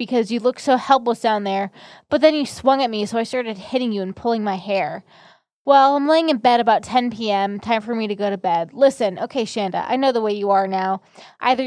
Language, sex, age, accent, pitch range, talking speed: English, female, 20-39, American, 205-255 Hz, 245 wpm